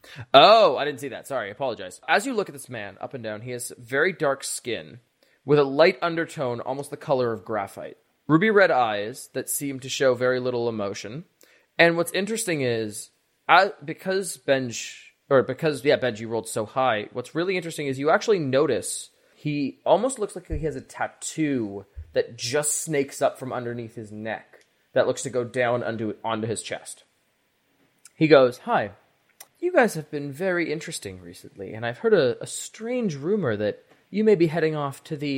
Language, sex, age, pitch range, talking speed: English, male, 20-39, 120-175 Hz, 190 wpm